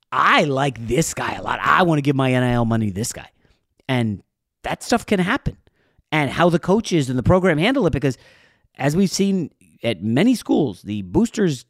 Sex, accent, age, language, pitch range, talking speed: male, American, 40-59, English, 125-175 Hz, 200 wpm